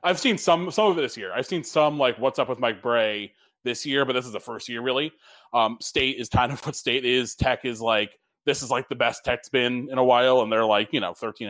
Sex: male